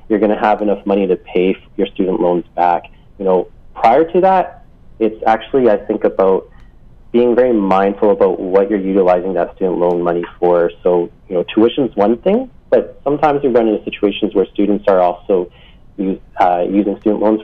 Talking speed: 190 wpm